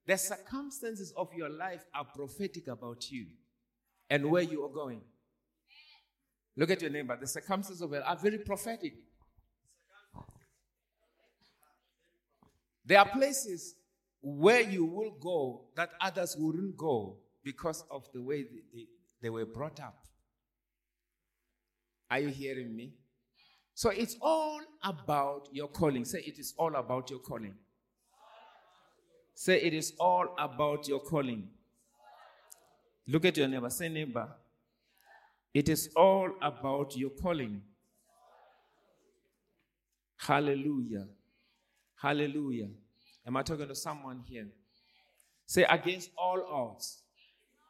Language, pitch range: English, 130-180 Hz